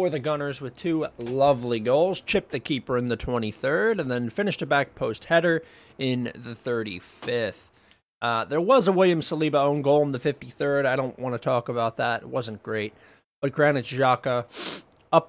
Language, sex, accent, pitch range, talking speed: English, male, American, 110-140 Hz, 190 wpm